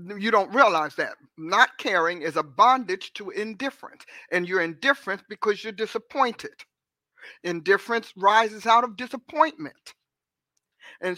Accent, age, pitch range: American, 50-69, 190-240 Hz